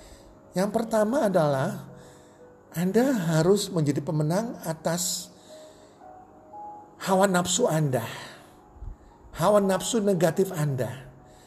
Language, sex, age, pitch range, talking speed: Indonesian, male, 50-69, 150-200 Hz, 80 wpm